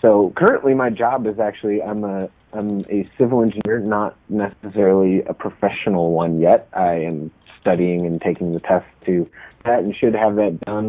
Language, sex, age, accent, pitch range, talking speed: English, male, 30-49, American, 90-110 Hz, 175 wpm